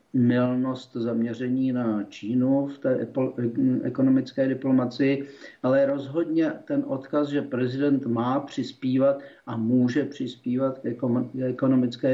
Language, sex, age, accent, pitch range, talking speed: Czech, male, 50-69, native, 125-145 Hz, 105 wpm